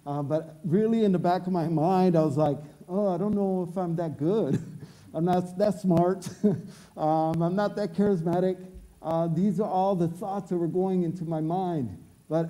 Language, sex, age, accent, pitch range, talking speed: English, male, 50-69, American, 170-215 Hz, 200 wpm